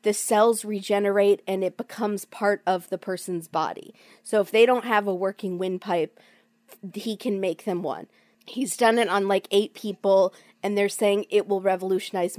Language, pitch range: English, 190-220 Hz